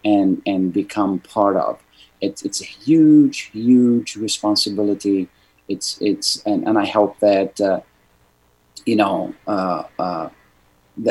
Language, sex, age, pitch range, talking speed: Arabic, male, 30-49, 100-140 Hz, 120 wpm